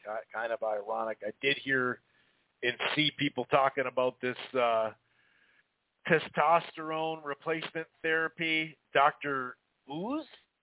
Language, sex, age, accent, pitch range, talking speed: English, male, 40-59, American, 125-150 Hz, 100 wpm